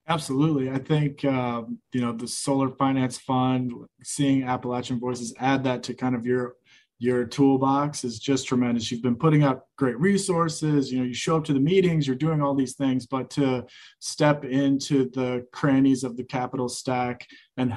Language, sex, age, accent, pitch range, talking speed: English, male, 20-39, American, 125-135 Hz, 180 wpm